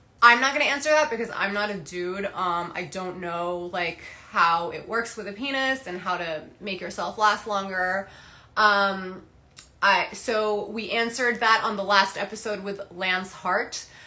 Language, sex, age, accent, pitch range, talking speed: English, female, 20-39, American, 185-230 Hz, 180 wpm